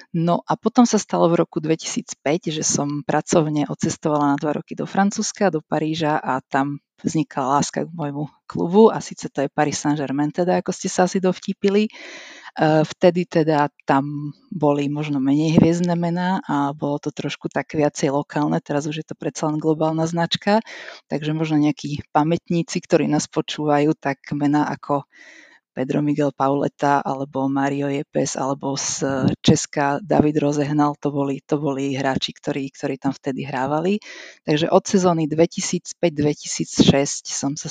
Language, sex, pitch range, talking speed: Slovak, female, 145-175 Hz, 155 wpm